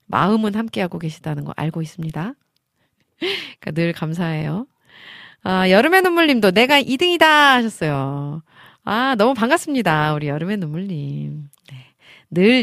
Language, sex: Korean, female